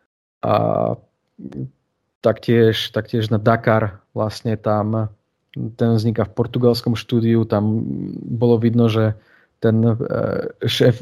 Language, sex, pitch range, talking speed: Slovak, male, 110-120 Hz, 100 wpm